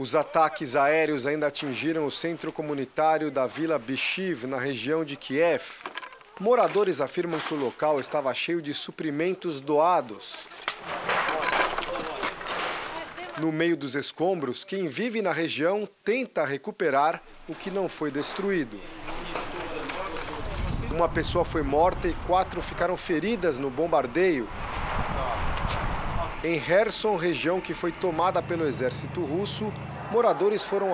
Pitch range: 150-190 Hz